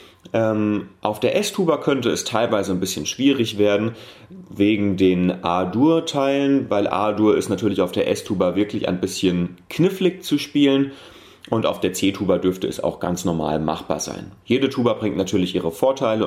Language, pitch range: German, 95-135 Hz